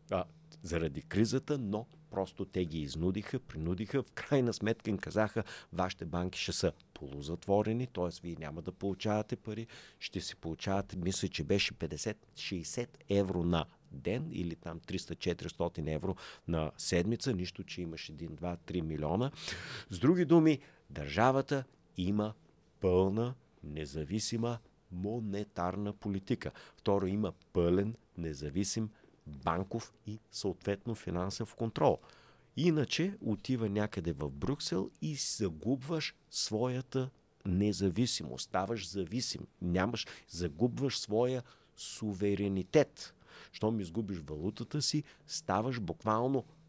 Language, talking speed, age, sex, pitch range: Bulgarian, 110 wpm, 50-69, male, 90-120 Hz